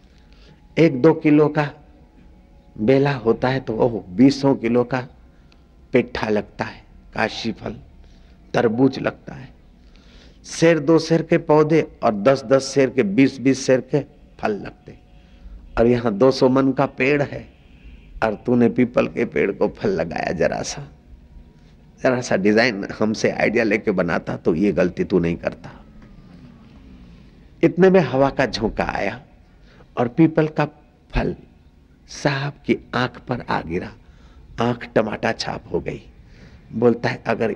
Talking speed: 140 wpm